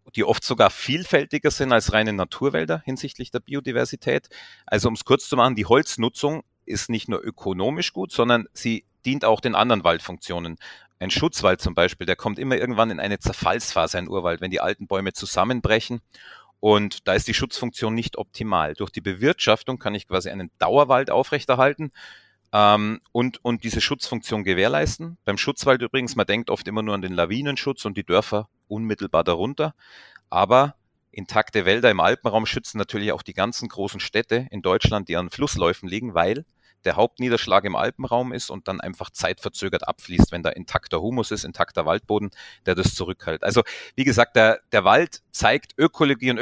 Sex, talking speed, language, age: male, 175 wpm, German, 30-49